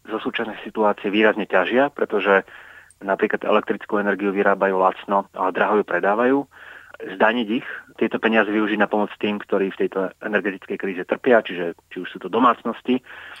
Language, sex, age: Slovak, male, 30-49